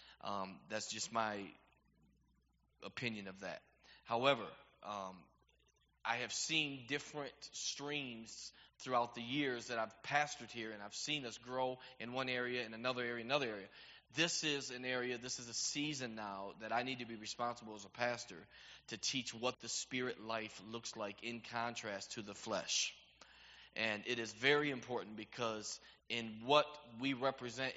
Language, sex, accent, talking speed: English, male, American, 160 wpm